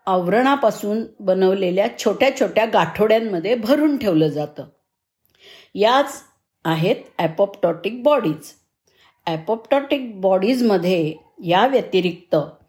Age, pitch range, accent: 50-69, 180-245 Hz, native